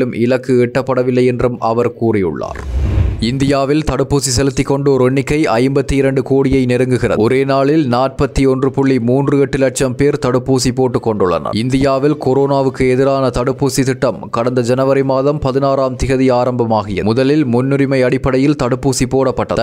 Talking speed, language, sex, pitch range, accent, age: 110 wpm, English, male, 125-135 Hz, Indian, 20-39